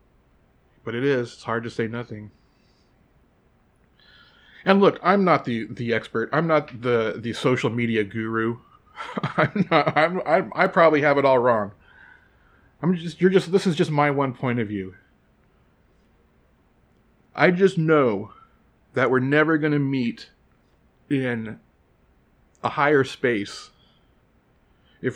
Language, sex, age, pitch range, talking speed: English, male, 30-49, 110-145 Hz, 140 wpm